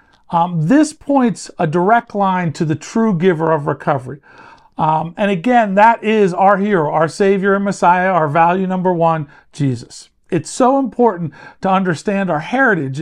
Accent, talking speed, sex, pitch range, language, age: American, 160 wpm, male, 160-210 Hz, English, 50-69